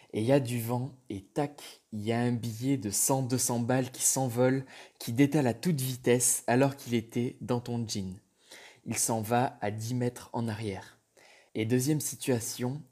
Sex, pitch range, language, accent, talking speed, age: male, 115-135 Hz, French, French, 185 wpm, 20-39